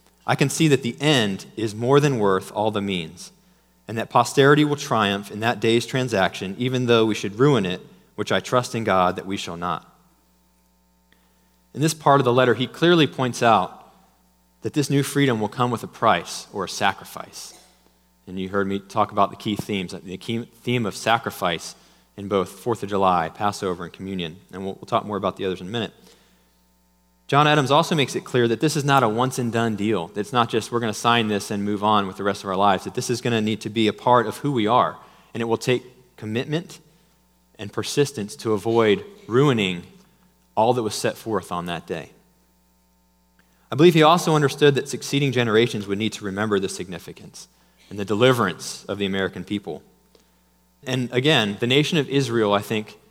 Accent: American